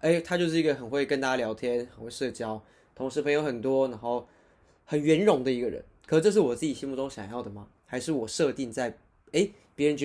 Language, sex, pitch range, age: Chinese, male, 115-150 Hz, 20-39